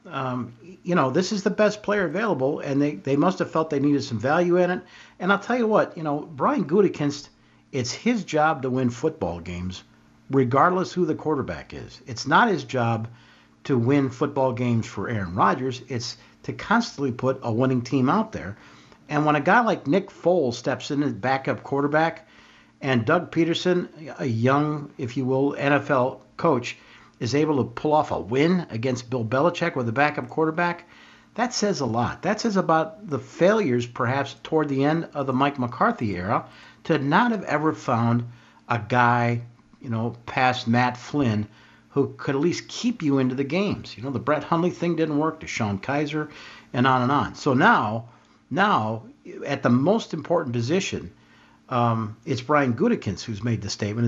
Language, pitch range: English, 120-165 Hz